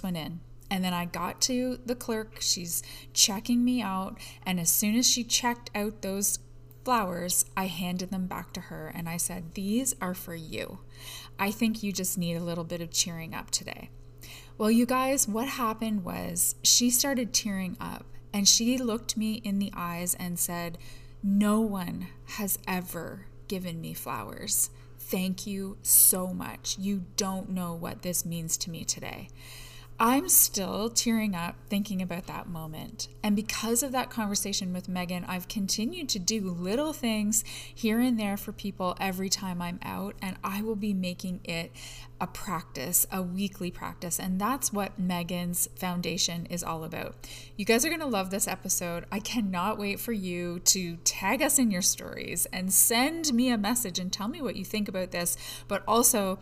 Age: 20-39